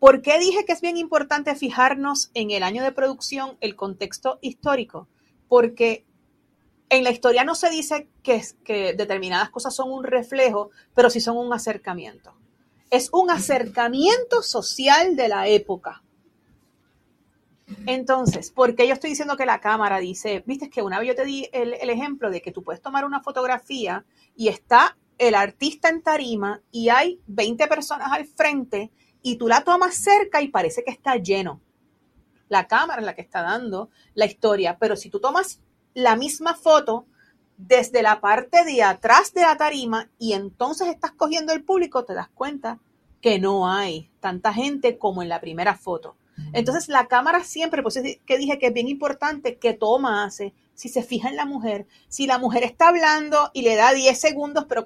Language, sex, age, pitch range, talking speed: Spanish, female, 40-59, 220-290 Hz, 180 wpm